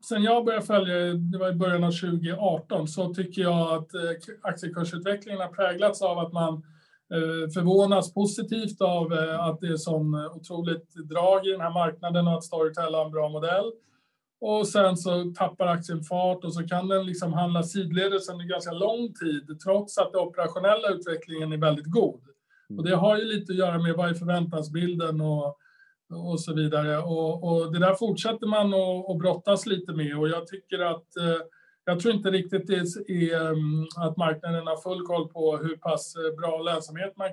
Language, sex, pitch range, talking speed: Swedish, male, 160-185 Hz, 185 wpm